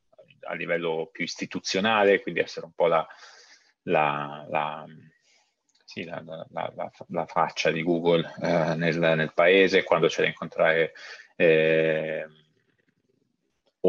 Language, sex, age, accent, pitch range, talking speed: Italian, male, 30-49, native, 80-95 Hz, 95 wpm